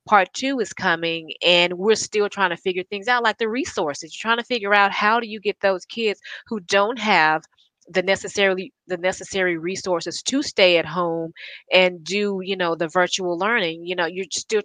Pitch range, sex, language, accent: 170-205 Hz, female, English, American